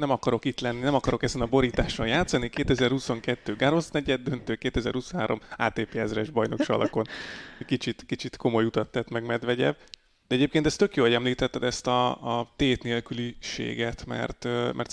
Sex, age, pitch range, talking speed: male, 30-49, 115-130 Hz, 160 wpm